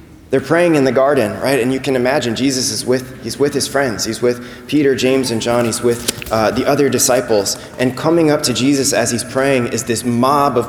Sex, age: male, 20-39